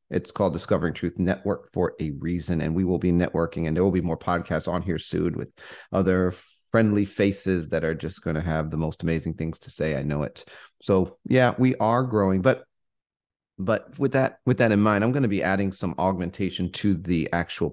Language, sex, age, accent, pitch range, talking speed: English, male, 30-49, American, 90-110 Hz, 215 wpm